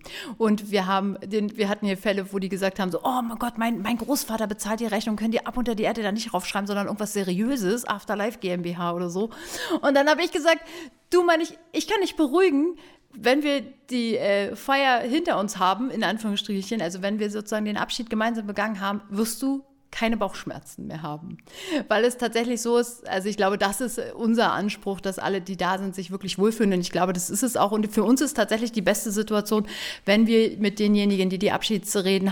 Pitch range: 190-230 Hz